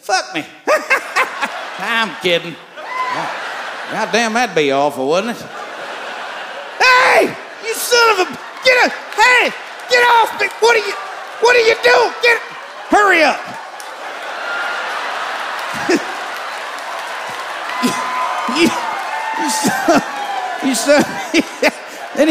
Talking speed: 105 wpm